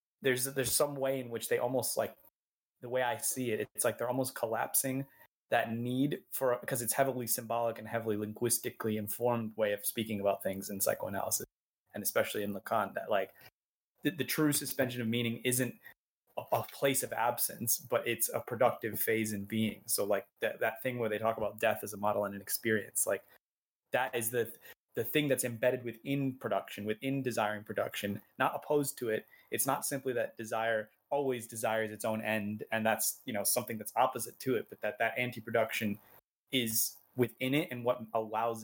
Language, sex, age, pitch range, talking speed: English, male, 20-39, 110-130 Hz, 195 wpm